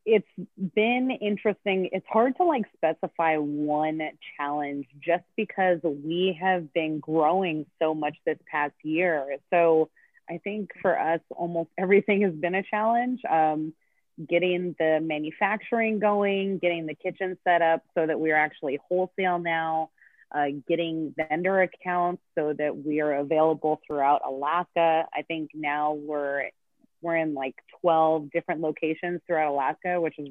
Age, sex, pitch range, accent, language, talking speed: 30-49, female, 150-185 Hz, American, English, 145 wpm